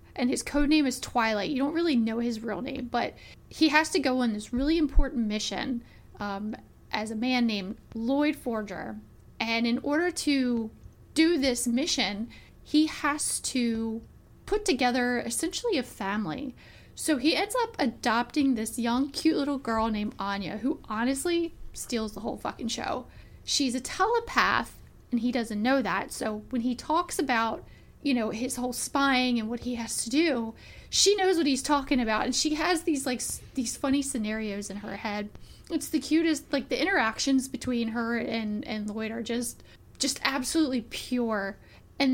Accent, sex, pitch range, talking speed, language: American, female, 230-280 Hz, 175 wpm, English